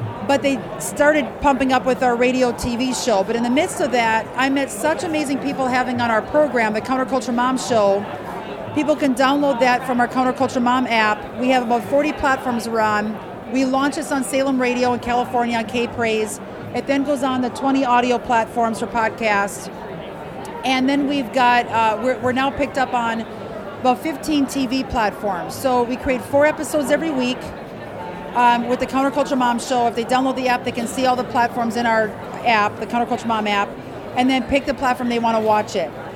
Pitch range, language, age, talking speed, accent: 235-275 Hz, English, 40-59, 200 wpm, American